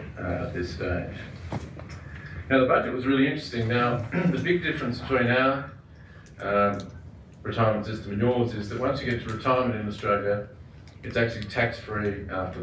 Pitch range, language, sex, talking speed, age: 100-120 Hz, English, male, 155 wpm, 40-59